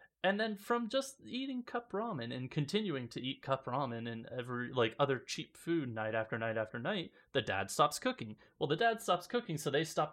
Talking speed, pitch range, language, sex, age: 215 wpm, 135-190 Hz, English, male, 20-39